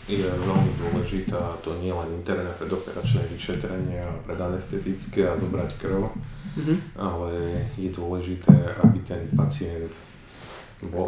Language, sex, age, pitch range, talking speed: Slovak, male, 30-49, 80-100 Hz, 120 wpm